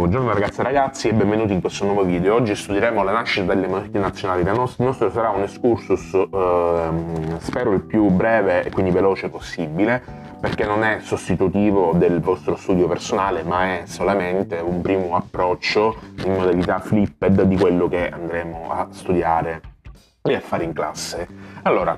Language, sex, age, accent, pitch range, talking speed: Italian, male, 20-39, native, 90-115 Hz, 165 wpm